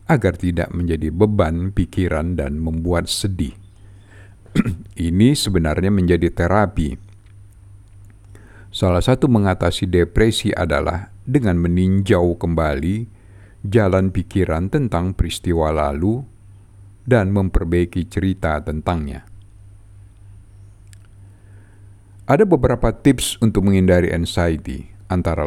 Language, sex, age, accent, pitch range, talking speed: Indonesian, male, 50-69, native, 85-100 Hz, 85 wpm